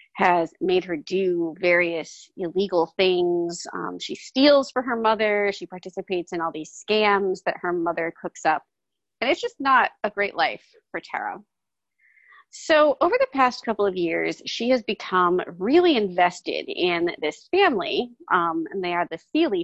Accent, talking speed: American, 165 wpm